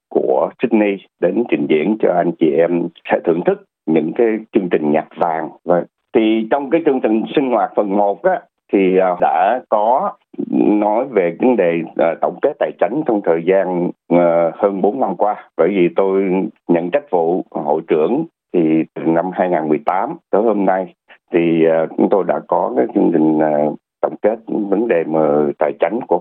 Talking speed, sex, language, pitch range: 180 wpm, male, Vietnamese, 80-100 Hz